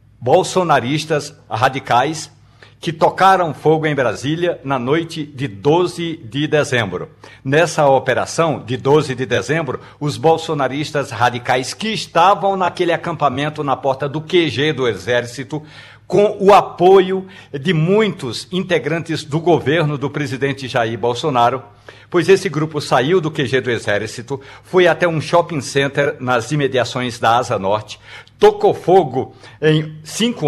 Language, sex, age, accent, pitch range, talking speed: Portuguese, male, 60-79, Brazilian, 130-165 Hz, 130 wpm